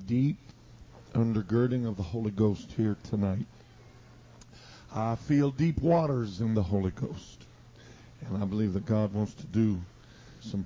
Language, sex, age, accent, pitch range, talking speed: English, male, 50-69, American, 105-120 Hz, 140 wpm